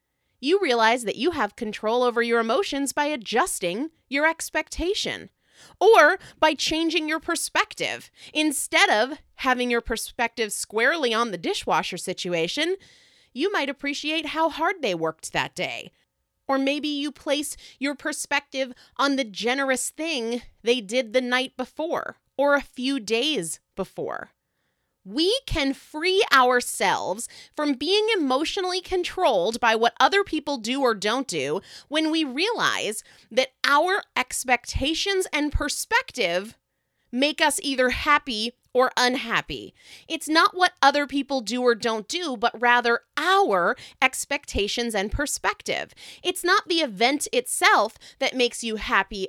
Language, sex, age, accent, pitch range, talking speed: English, female, 30-49, American, 235-320 Hz, 135 wpm